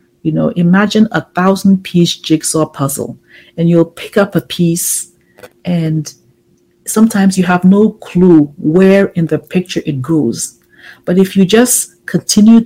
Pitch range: 165-195 Hz